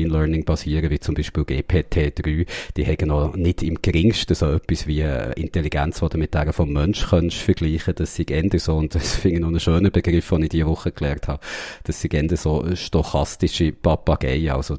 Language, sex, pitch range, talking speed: German, male, 80-95 Hz, 195 wpm